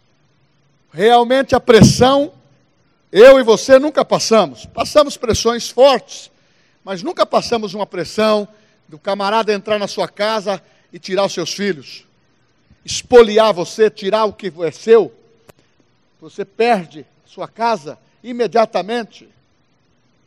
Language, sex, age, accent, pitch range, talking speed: Portuguese, male, 60-79, Brazilian, 185-250 Hz, 115 wpm